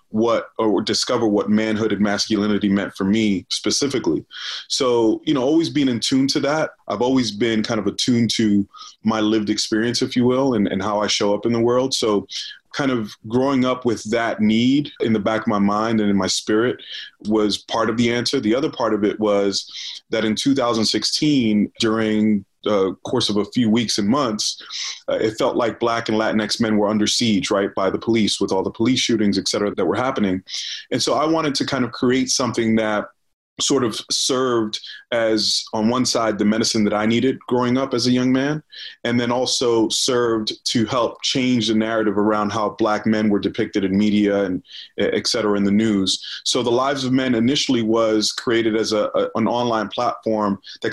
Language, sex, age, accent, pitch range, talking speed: English, male, 30-49, American, 105-125 Hz, 205 wpm